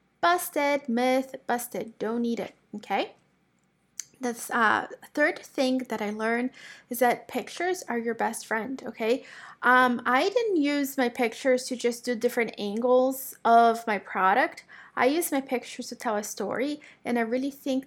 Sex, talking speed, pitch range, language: female, 160 wpm, 225-265 Hz, English